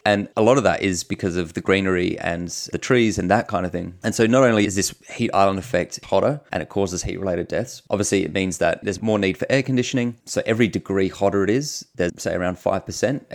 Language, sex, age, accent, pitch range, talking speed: English, male, 30-49, Australian, 95-110 Hz, 240 wpm